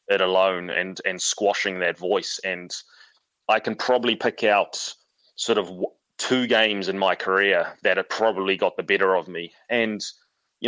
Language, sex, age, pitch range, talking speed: English, male, 20-39, 95-115 Hz, 170 wpm